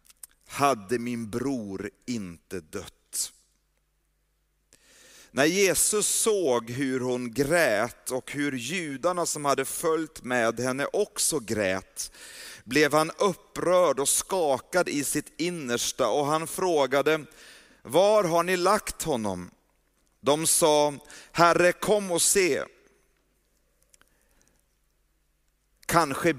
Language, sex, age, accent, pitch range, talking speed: Swedish, male, 40-59, native, 120-175 Hz, 100 wpm